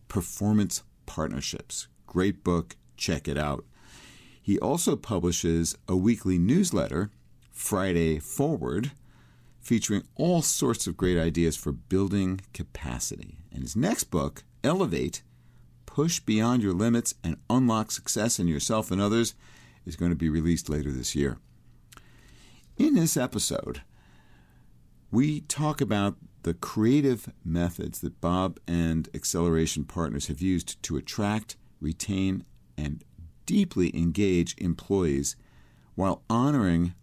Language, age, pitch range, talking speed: English, 50-69, 80-110 Hz, 120 wpm